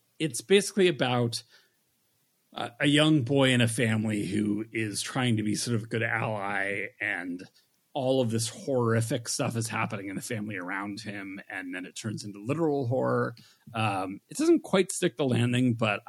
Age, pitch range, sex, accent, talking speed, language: 30-49, 110-140 Hz, male, American, 180 wpm, English